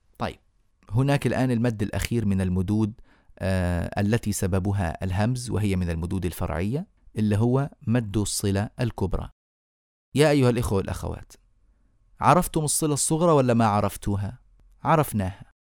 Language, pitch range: Arabic, 105-140 Hz